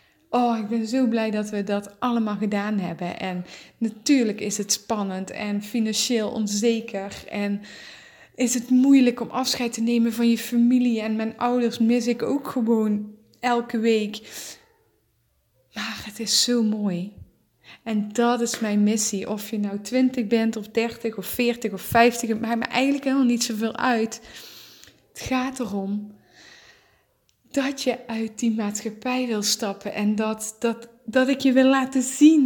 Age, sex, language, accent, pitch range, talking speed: 20-39, female, English, Dutch, 215-255 Hz, 160 wpm